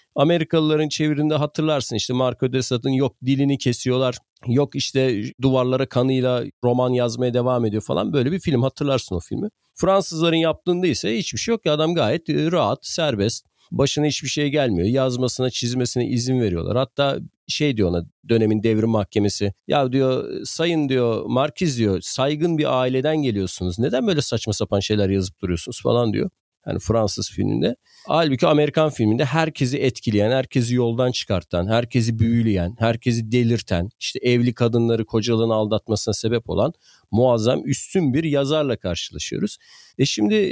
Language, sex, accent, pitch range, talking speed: Turkish, male, native, 110-150 Hz, 145 wpm